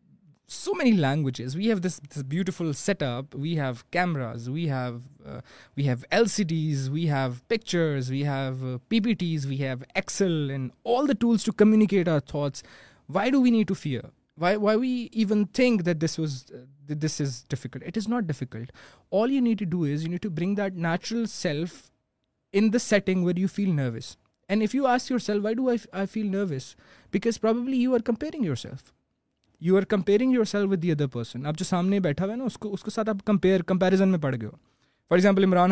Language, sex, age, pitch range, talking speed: Urdu, male, 20-39, 135-195 Hz, 210 wpm